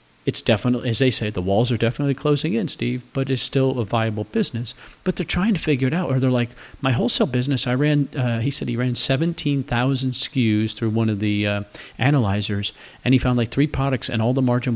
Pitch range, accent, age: 110-135 Hz, American, 40-59